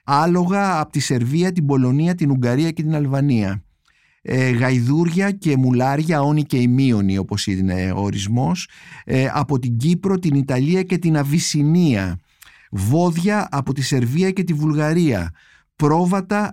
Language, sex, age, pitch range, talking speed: Greek, male, 50-69, 120-170 Hz, 140 wpm